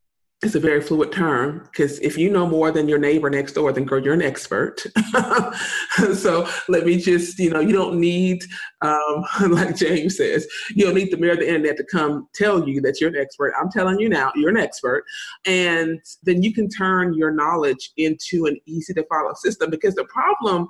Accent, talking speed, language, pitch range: American, 210 wpm, English, 155-215 Hz